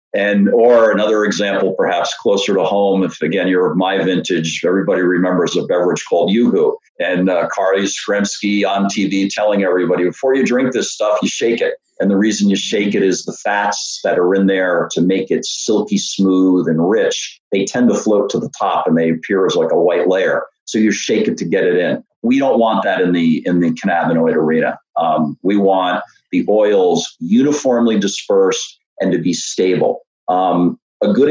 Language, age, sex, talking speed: English, 50-69, male, 195 wpm